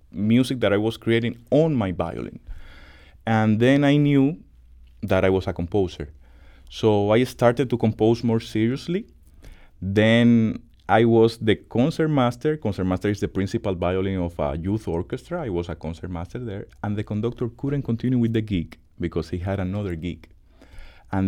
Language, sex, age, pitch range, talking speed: English, male, 30-49, 85-125 Hz, 170 wpm